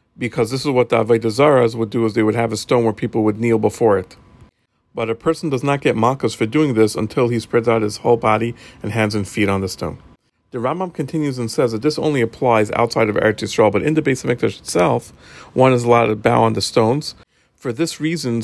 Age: 40-59